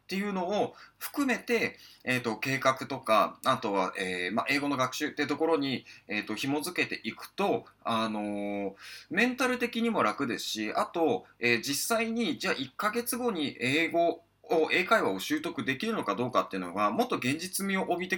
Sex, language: male, Japanese